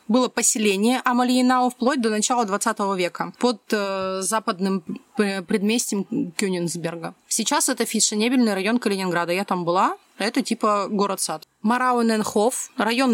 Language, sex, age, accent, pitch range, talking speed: Russian, female, 30-49, native, 200-250 Hz, 120 wpm